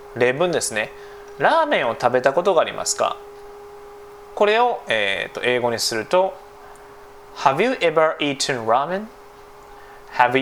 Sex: male